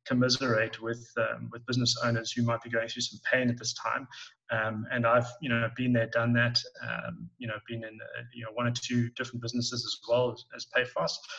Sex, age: male, 20-39